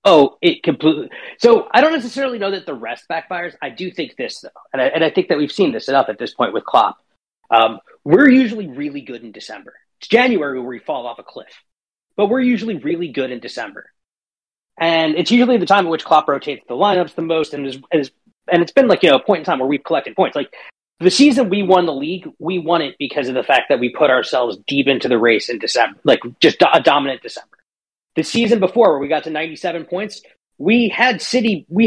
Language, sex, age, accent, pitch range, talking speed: English, male, 30-49, American, 155-235 Hz, 240 wpm